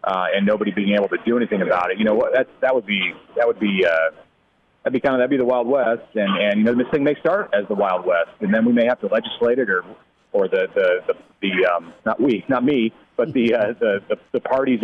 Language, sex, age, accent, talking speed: English, male, 30-49, American, 280 wpm